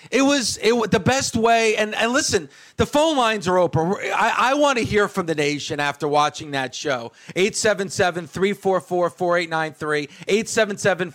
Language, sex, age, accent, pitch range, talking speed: English, male, 40-59, American, 170-225 Hz, 145 wpm